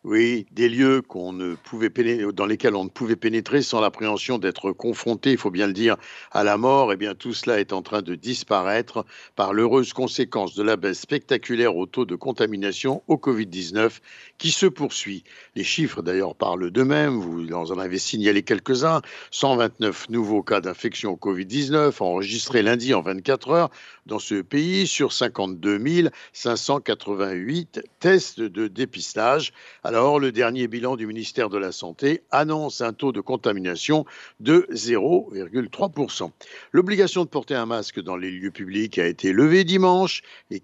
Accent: French